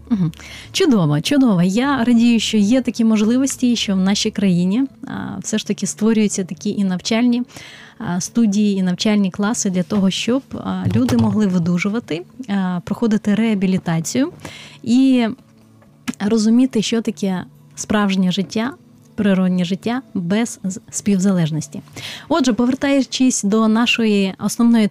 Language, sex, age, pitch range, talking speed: Ukrainian, female, 20-39, 190-230 Hz, 110 wpm